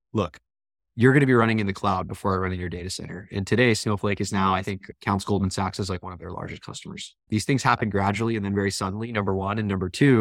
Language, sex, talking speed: English, male, 270 wpm